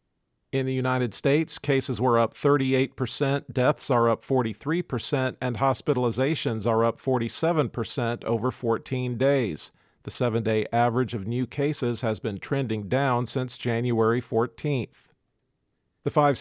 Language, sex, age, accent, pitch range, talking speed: English, male, 50-69, American, 120-140 Hz, 140 wpm